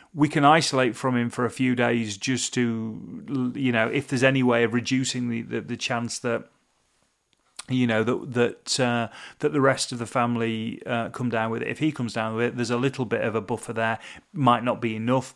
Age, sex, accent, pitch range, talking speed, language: 30-49, male, British, 120-135 Hz, 225 wpm, English